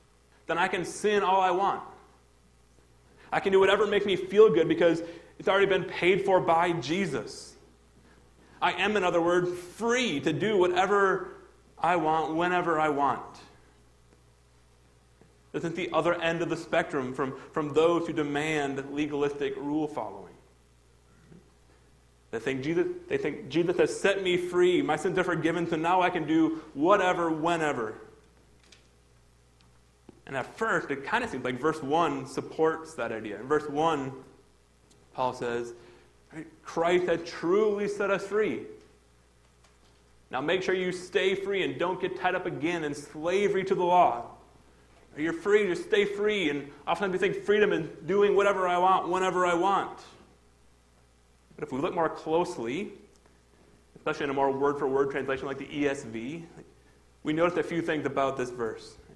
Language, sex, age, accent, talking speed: English, male, 30-49, American, 160 wpm